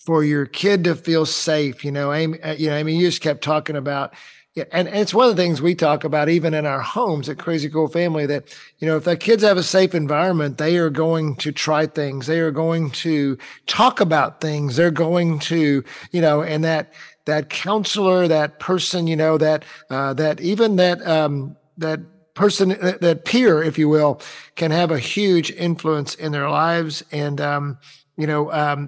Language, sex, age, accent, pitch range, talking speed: English, male, 50-69, American, 150-185 Hz, 200 wpm